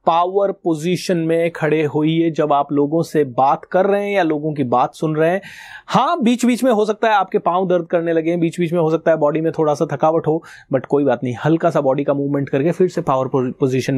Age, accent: 30-49, native